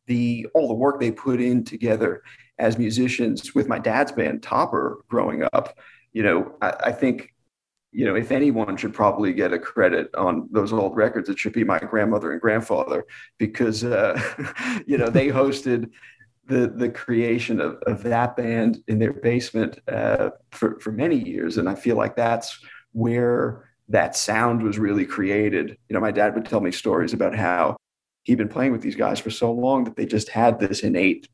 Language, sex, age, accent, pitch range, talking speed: English, male, 40-59, American, 110-125 Hz, 190 wpm